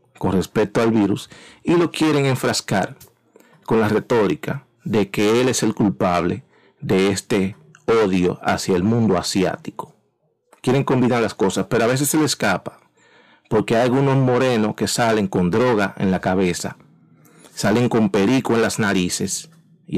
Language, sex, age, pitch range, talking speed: Spanish, male, 40-59, 105-155 Hz, 155 wpm